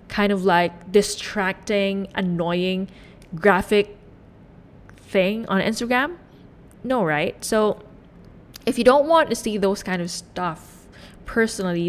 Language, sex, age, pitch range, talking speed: English, female, 20-39, 175-220 Hz, 115 wpm